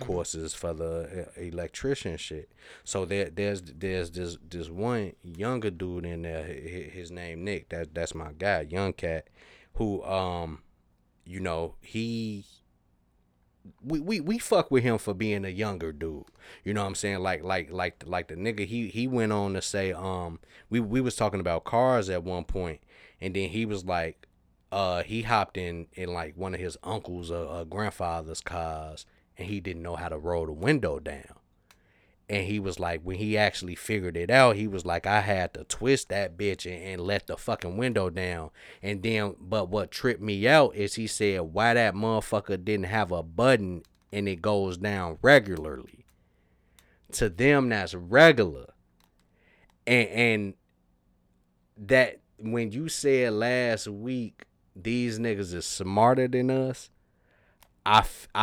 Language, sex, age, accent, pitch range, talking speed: English, male, 30-49, American, 85-110 Hz, 165 wpm